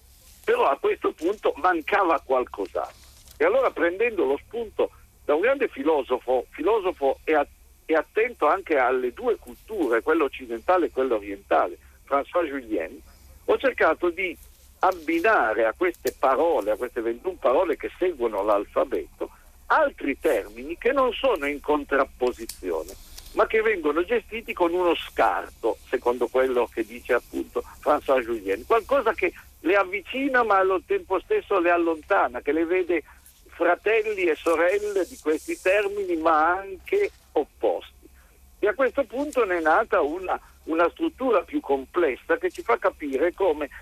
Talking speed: 140 wpm